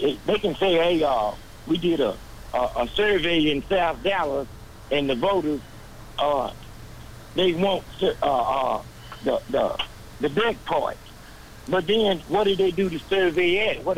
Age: 60-79